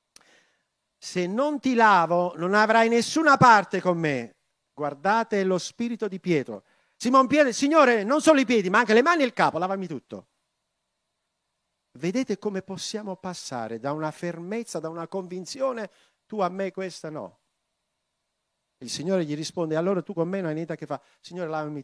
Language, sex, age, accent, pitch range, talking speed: Italian, male, 50-69, native, 130-190 Hz, 170 wpm